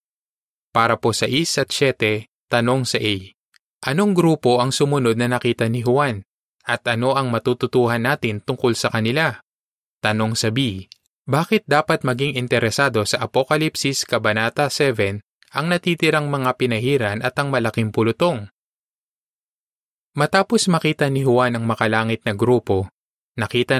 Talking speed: 135 wpm